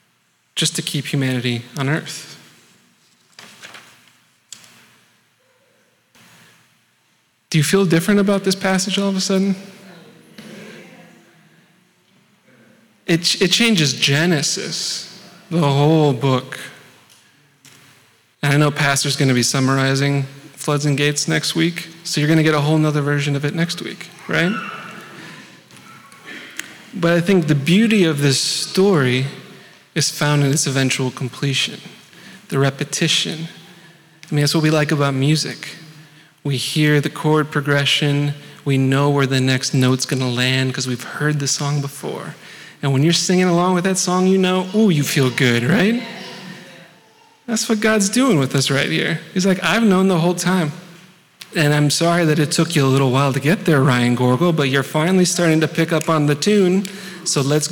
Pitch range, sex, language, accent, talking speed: 140-180 Hz, male, English, American, 155 wpm